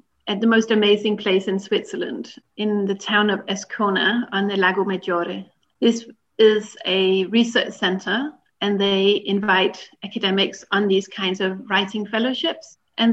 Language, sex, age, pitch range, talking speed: English, female, 30-49, 195-230 Hz, 145 wpm